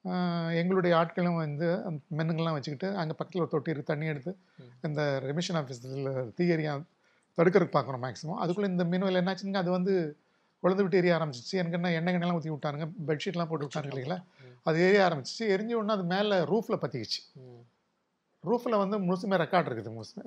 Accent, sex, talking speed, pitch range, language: native, male, 150 wpm, 145-185 Hz, Tamil